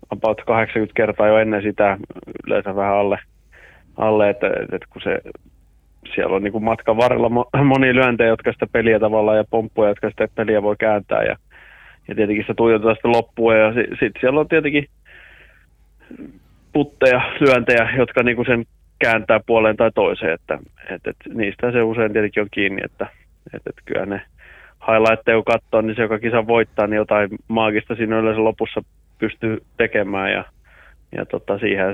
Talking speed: 175 wpm